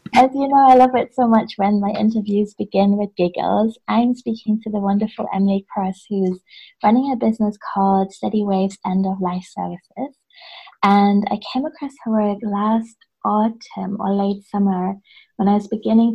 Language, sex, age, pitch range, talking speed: English, female, 20-39, 185-220 Hz, 175 wpm